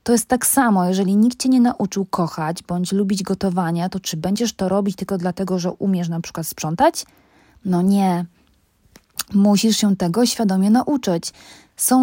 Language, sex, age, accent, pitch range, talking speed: Polish, female, 20-39, native, 180-210 Hz, 165 wpm